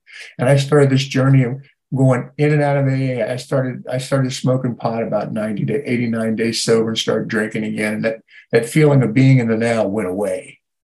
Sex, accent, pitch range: male, American, 110-135 Hz